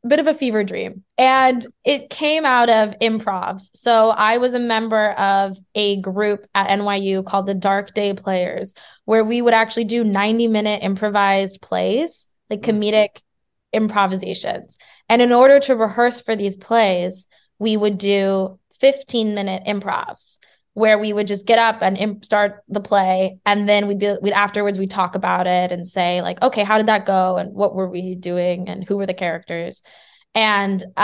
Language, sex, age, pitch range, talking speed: English, female, 20-39, 195-220 Hz, 175 wpm